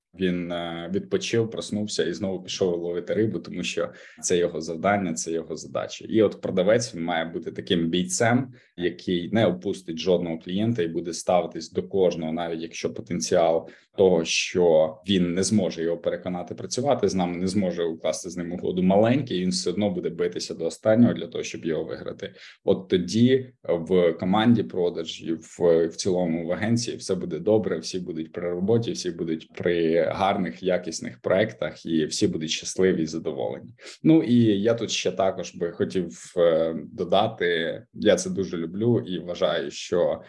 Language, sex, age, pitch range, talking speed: Ukrainian, male, 20-39, 85-110 Hz, 160 wpm